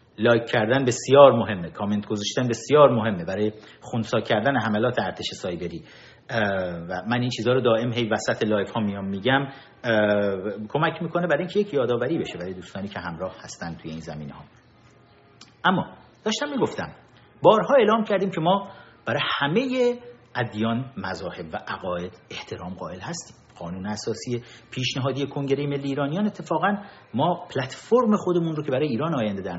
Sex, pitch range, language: male, 110-170 Hz, Persian